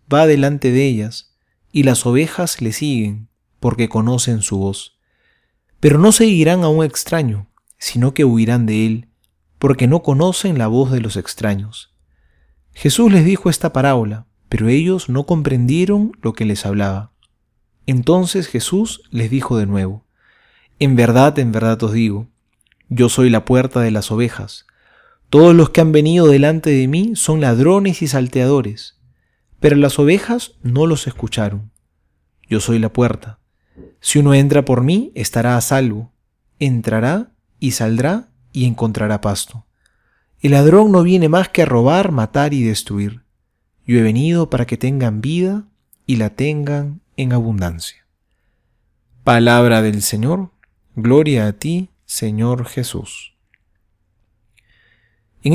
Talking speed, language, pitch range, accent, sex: 145 wpm, Spanish, 110-150 Hz, Argentinian, male